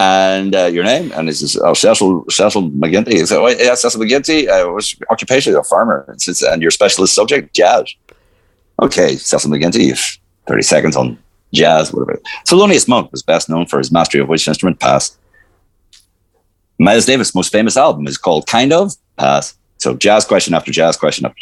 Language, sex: English, male